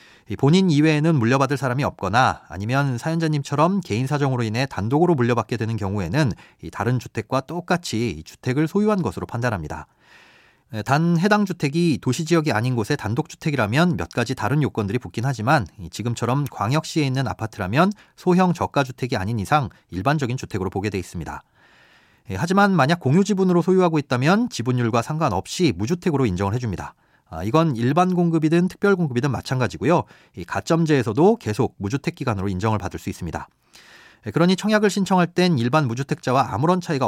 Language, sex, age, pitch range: Korean, male, 30-49, 115-170 Hz